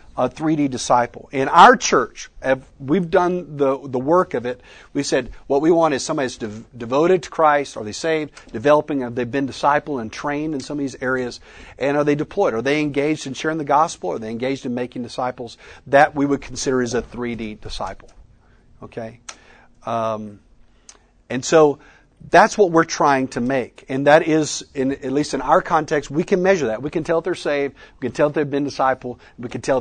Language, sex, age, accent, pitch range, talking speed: English, male, 50-69, American, 115-150 Hz, 205 wpm